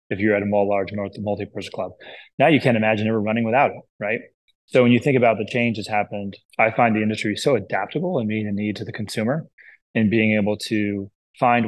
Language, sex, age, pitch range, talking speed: English, male, 20-39, 105-115 Hz, 225 wpm